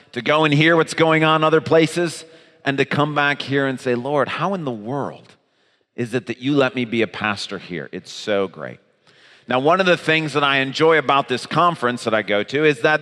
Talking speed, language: 235 wpm, English